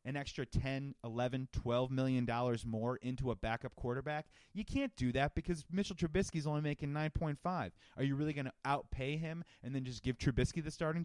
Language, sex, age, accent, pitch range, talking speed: English, male, 30-49, American, 110-145 Hz, 195 wpm